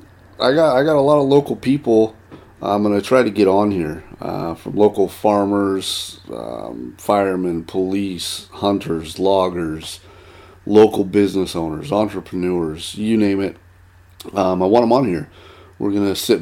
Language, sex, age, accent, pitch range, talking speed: English, male, 30-49, American, 90-100 Hz, 155 wpm